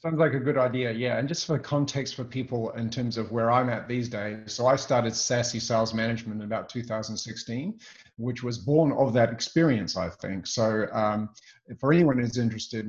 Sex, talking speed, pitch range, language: male, 200 wpm, 110-130 Hz, English